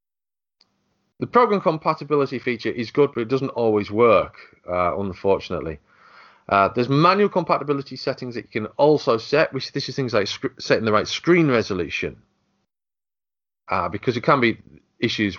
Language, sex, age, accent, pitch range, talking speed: English, male, 30-49, British, 100-135 Hz, 150 wpm